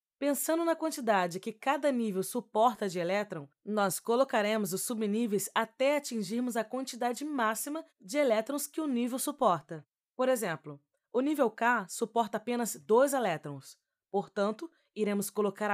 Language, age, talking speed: Portuguese, 20-39, 135 wpm